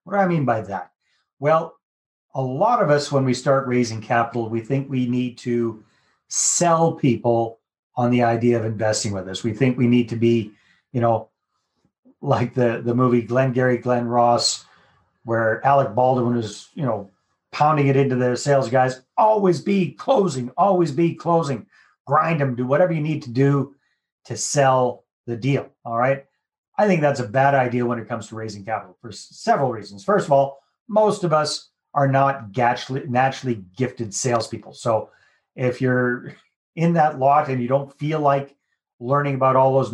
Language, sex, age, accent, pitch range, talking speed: English, male, 30-49, American, 120-140 Hz, 180 wpm